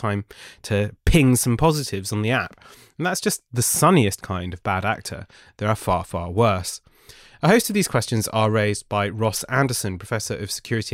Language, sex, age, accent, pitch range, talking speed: English, male, 20-39, British, 105-135 Hz, 190 wpm